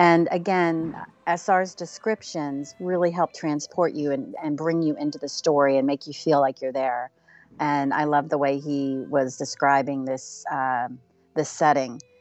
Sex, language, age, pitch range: female, English, 40-59, 140-180 Hz